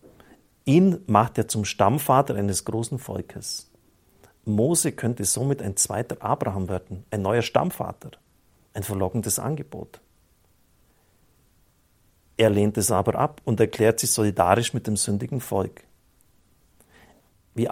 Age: 50-69